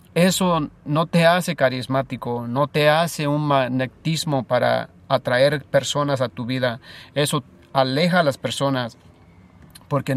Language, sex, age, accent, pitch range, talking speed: Spanish, male, 40-59, Mexican, 130-155 Hz, 130 wpm